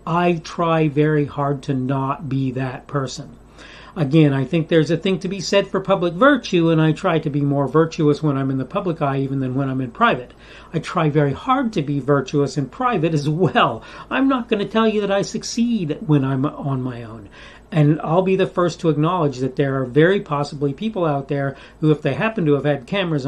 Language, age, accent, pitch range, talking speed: English, 40-59, American, 145-185 Hz, 225 wpm